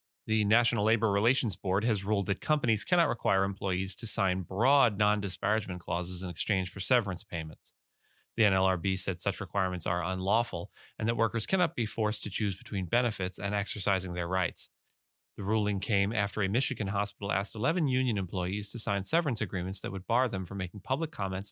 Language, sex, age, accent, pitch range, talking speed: English, male, 30-49, American, 95-115 Hz, 185 wpm